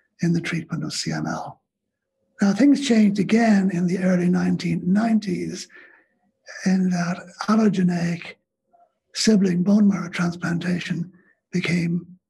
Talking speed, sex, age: 100 wpm, male, 60-79